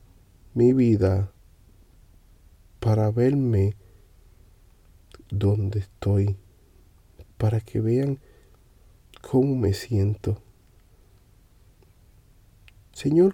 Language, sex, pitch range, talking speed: Spanish, male, 90-115 Hz, 60 wpm